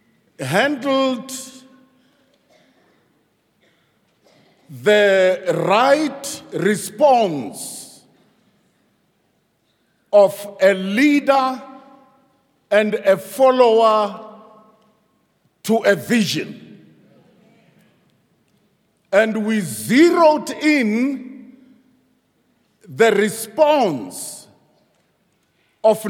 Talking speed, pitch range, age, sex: 45 wpm, 205-265 Hz, 50-69, male